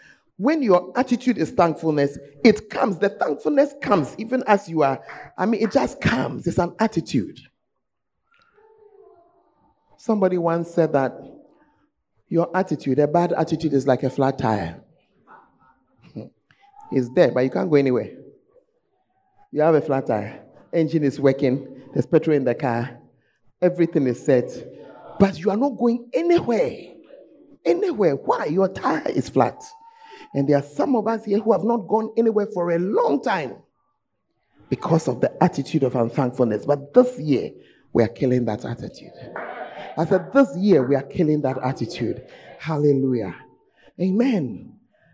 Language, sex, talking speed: English, male, 150 wpm